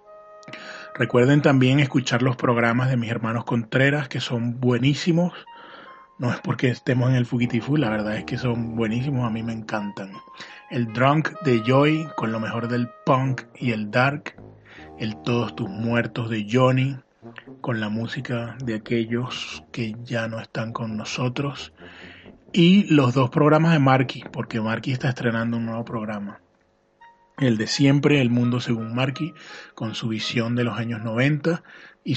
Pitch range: 115-145 Hz